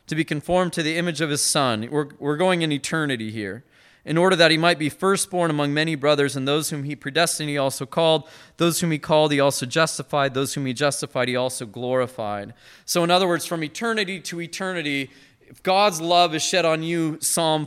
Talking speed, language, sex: 215 wpm, English, male